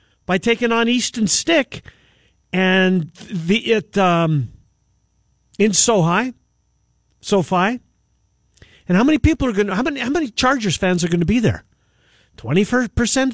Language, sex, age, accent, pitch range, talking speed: English, male, 50-69, American, 140-195 Hz, 150 wpm